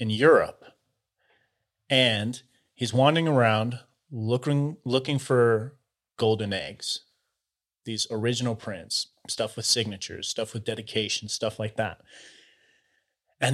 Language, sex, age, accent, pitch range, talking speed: English, male, 30-49, American, 110-130 Hz, 105 wpm